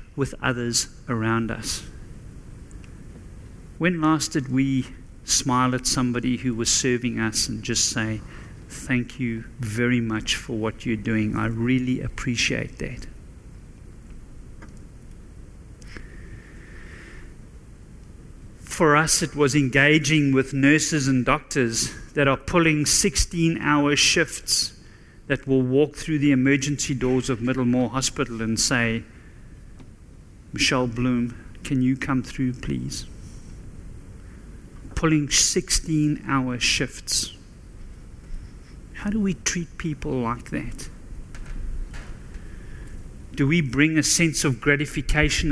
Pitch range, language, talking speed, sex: 120-150 Hz, English, 105 wpm, male